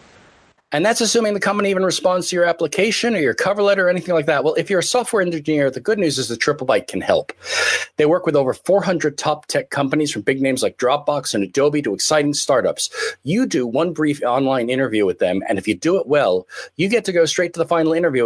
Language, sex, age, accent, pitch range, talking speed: English, male, 40-59, American, 135-180 Hz, 240 wpm